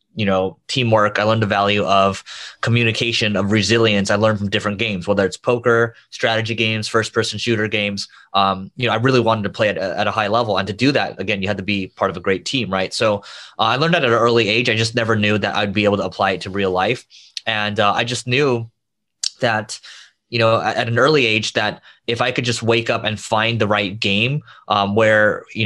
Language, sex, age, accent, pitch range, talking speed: English, male, 20-39, American, 100-120 Hz, 240 wpm